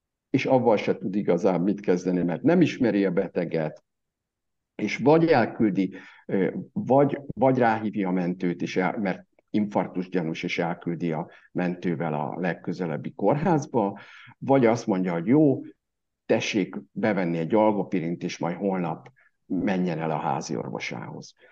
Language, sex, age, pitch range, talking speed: Hungarian, male, 60-79, 85-105 Hz, 135 wpm